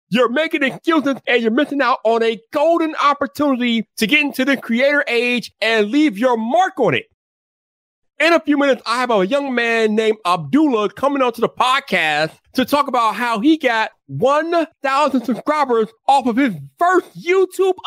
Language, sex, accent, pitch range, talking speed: English, male, American, 185-290 Hz, 170 wpm